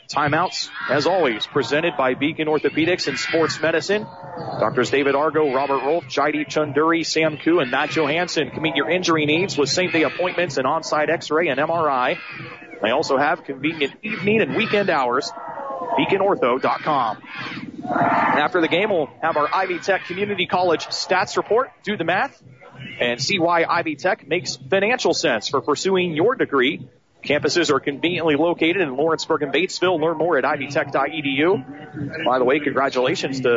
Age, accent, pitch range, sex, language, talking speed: 30-49, American, 140-180 Hz, male, English, 165 wpm